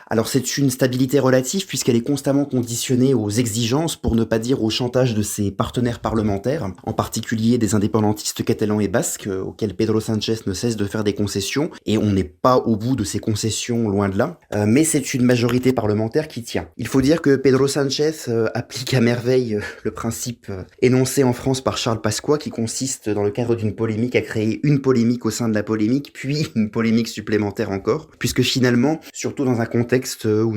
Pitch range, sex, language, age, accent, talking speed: 105-125 Hz, male, French, 20-39, French, 210 wpm